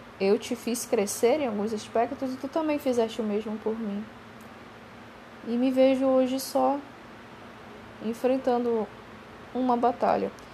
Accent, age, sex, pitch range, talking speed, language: Brazilian, 10-29, female, 195-240 Hz, 130 wpm, Portuguese